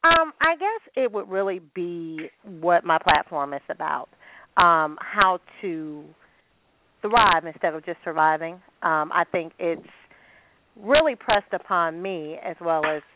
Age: 40-59